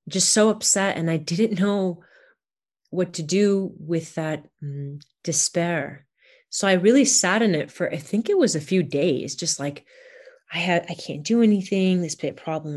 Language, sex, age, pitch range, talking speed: English, female, 30-49, 155-190 Hz, 180 wpm